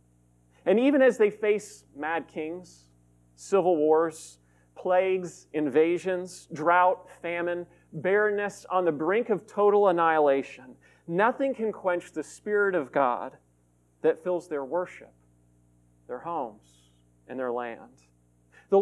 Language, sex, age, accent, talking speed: English, male, 40-59, American, 120 wpm